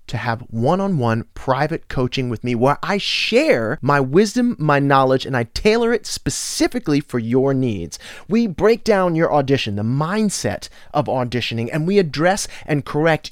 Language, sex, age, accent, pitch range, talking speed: English, male, 30-49, American, 120-180 Hz, 160 wpm